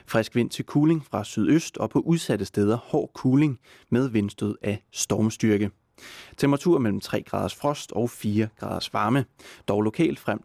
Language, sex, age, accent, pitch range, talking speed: English, male, 30-49, Danish, 105-140 Hz, 160 wpm